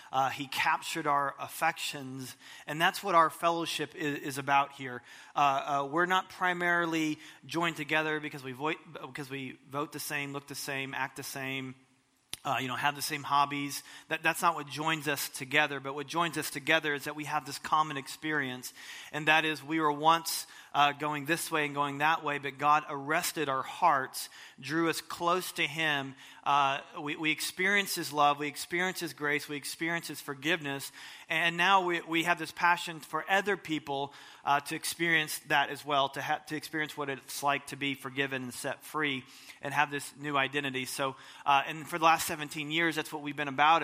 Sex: male